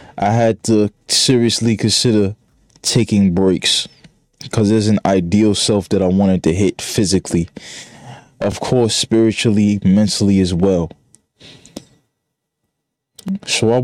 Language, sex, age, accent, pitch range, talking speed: English, male, 20-39, American, 100-115 Hz, 115 wpm